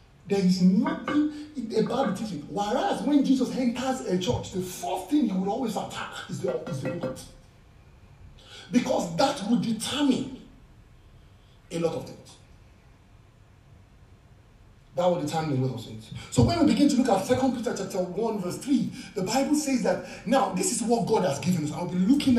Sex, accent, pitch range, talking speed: male, Nigerian, 155-260 Hz, 175 wpm